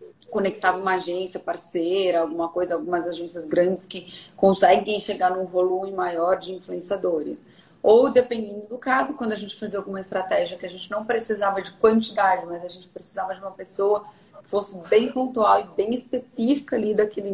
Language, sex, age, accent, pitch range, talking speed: Portuguese, female, 30-49, Brazilian, 175-215 Hz, 175 wpm